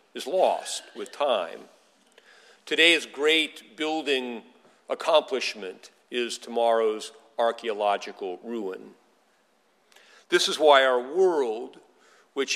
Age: 50-69